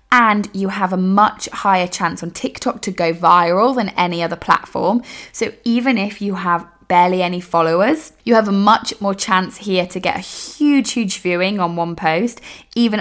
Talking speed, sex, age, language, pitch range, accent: 190 wpm, female, 20-39, English, 175-225 Hz, British